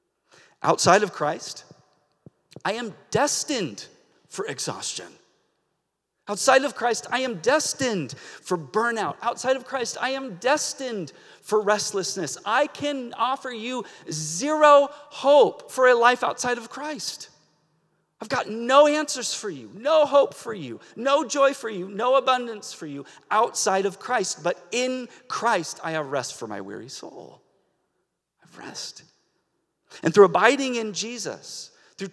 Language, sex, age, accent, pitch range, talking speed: English, male, 40-59, American, 175-265 Hz, 140 wpm